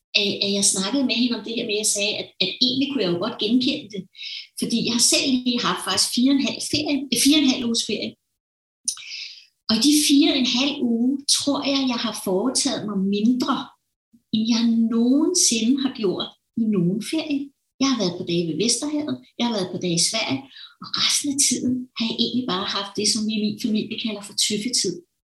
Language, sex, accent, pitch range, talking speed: Danish, female, native, 210-270 Hz, 220 wpm